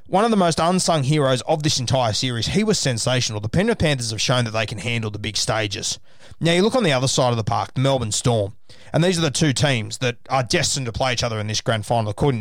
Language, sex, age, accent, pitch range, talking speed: English, male, 20-39, Australian, 115-140 Hz, 270 wpm